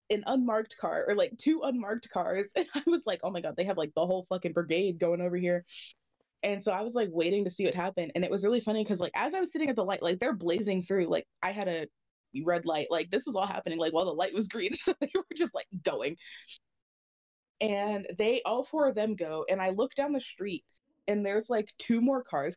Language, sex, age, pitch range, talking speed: English, female, 20-39, 185-235 Hz, 255 wpm